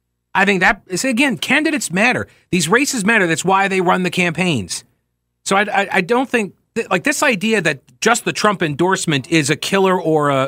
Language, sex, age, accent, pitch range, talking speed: English, male, 40-59, American, 130-190 Hz, 205 wpm